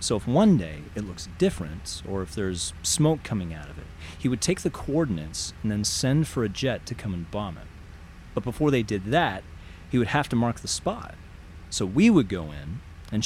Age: 30-49